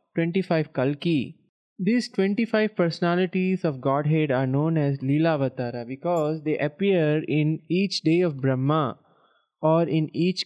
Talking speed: 130 wpm